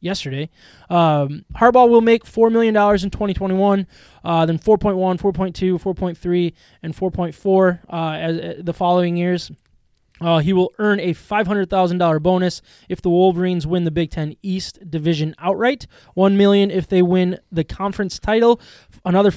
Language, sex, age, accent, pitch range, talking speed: English, male, 20-39, American, 170-195 Hz, 160 wpm